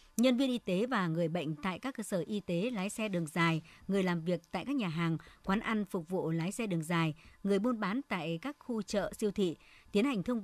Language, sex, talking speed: Vietnamese, male, 255 wpm